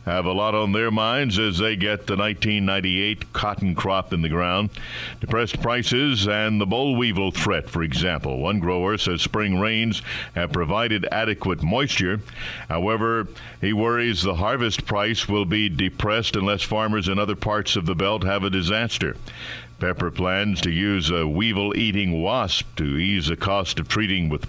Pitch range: 95-110 Hz